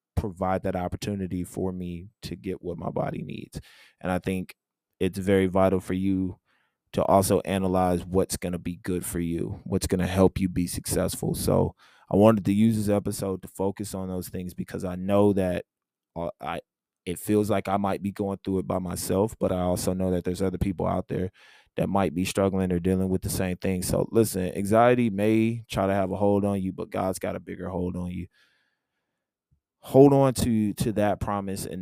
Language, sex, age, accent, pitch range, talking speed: English, male, 20-39, American, 90-105 Hz, 205 wpm